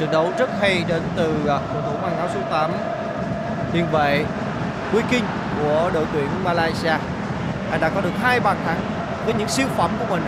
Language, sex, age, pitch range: Vietnamese, male, 20-39, 170-200 Hz